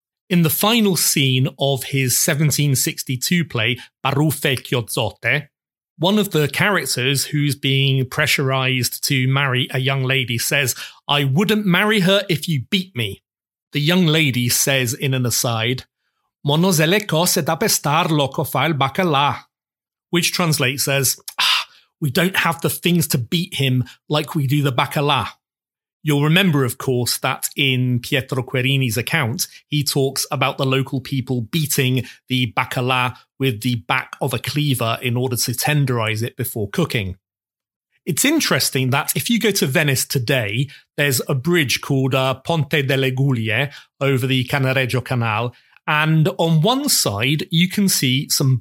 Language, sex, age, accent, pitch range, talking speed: English, male, 30-49, British, 130-160 Hz, 145 wpm